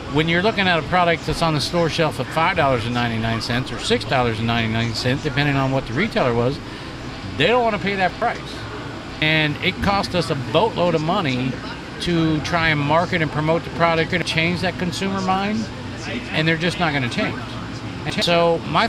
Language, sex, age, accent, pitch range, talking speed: English, male, 50-69, American, 130-170 Hz, 185 wpm